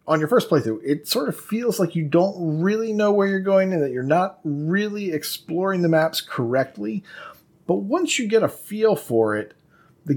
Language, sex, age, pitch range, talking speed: English, male, 30-49, 115-180 Hz, 200 wpm